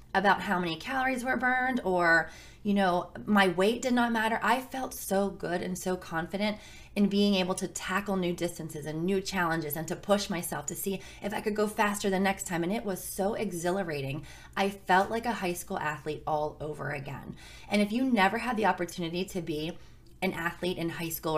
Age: 20-39